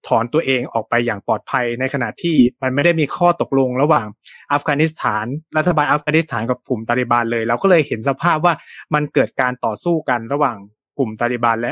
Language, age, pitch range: Thai, 20-39, 115-145 Hz